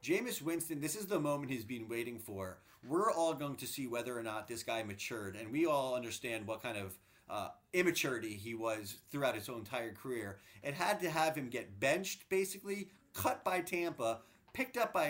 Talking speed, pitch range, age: 200 wpm, 115-180 Hz, 30-49